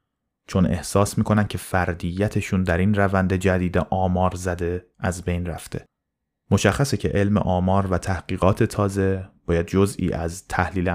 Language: Persian